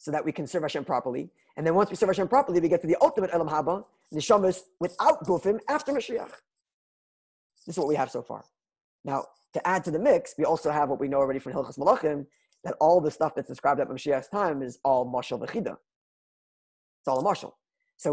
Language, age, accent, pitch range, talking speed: English, 20-39, American, 145-190 Hz, 220 wpm